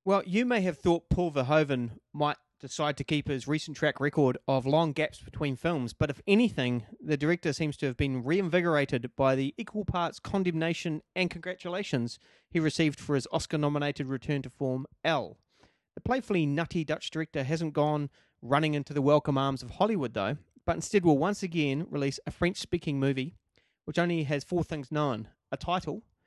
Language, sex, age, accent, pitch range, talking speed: English, male, 30-49, Australian, 135-170 Hz, 180 wpm